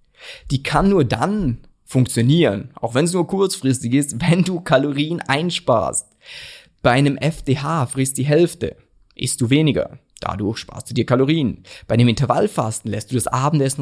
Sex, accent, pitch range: male, German, 120-155 Hz